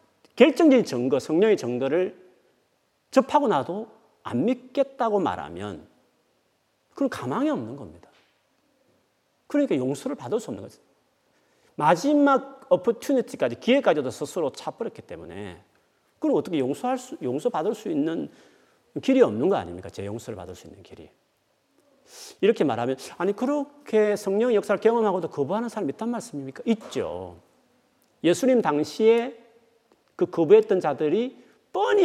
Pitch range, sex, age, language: 175-270 Hz, male, 40-59, Korean